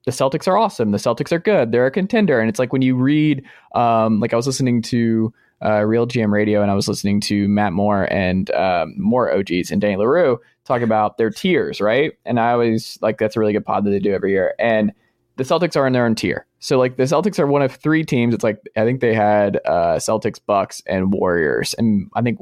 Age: 20-39